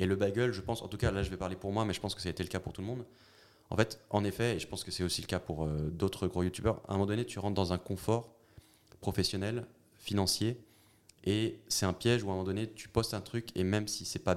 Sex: male